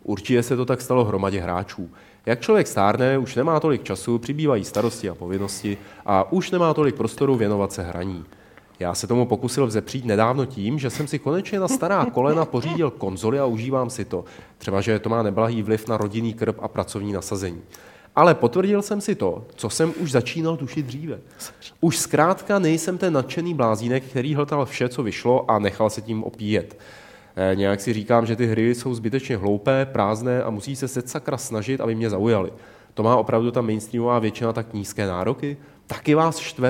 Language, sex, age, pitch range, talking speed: Czech, male, 30-49, 110-135 Hz, 190 wpm